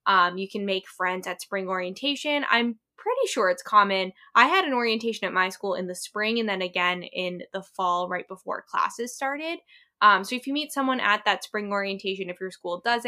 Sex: female